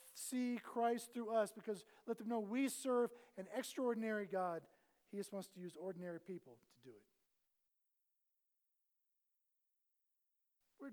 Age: 50-69